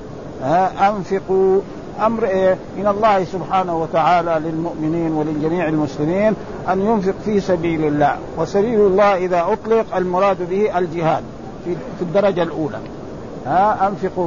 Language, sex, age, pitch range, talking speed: Arabic, male, 50-69, 170-215 Hz, 120 wpm